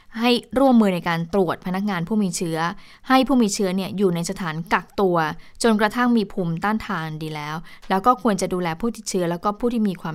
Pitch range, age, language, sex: 170-215 Hz, 20-39, Thai, female